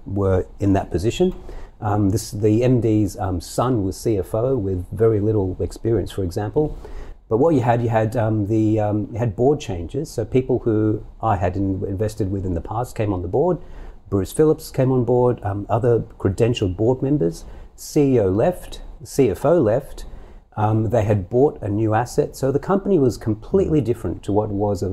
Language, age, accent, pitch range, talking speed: English, 40-59, Australian, 100-125 Hz, 190 wpm